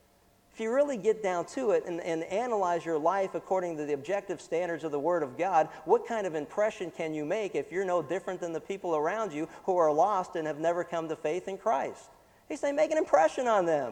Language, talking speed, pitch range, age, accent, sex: English, 240 wpm, 150-180 Hz, 50-69, American, male